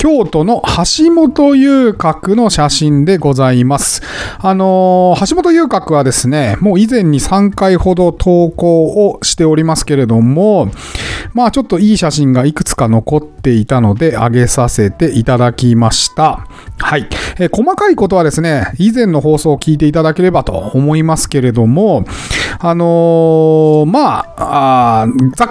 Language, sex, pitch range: Japanese, male, 125-200 Hz